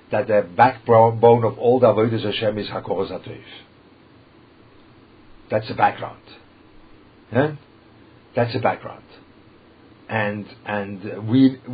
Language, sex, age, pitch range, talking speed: English, male, 50-69, 105-125 Hz, 100 wpm